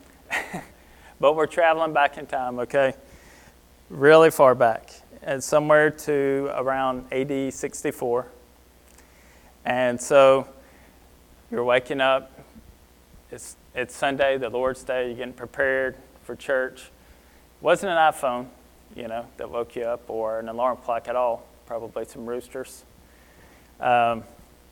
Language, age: English, 20-39